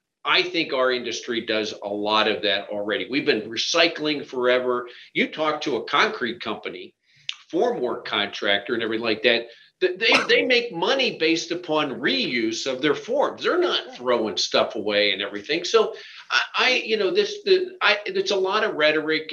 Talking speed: 175 wpm